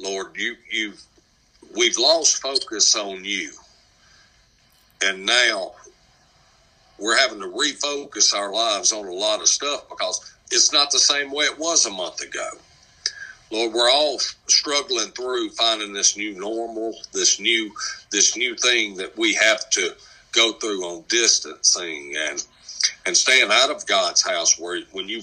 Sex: male